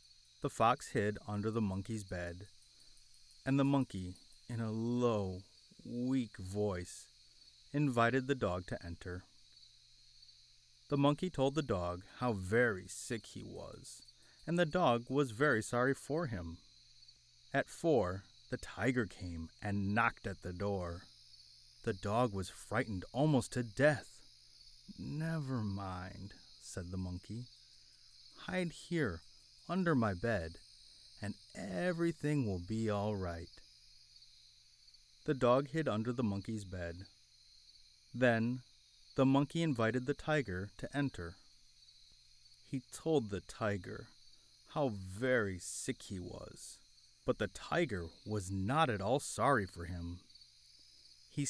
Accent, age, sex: American, 30-49, male